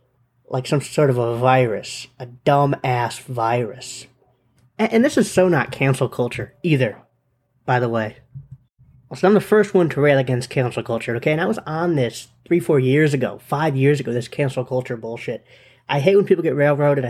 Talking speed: 190 wpm